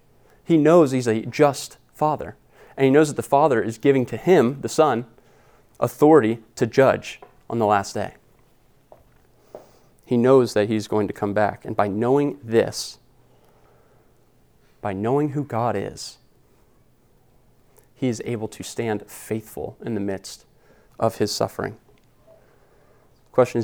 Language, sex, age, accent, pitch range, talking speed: English, male, 30-49, American, 110-135 Hz, 140 wpm